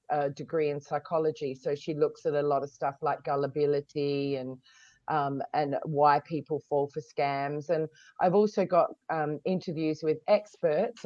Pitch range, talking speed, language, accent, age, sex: 145-180 Hz, 165 wpm, English, Australian, 30-49, female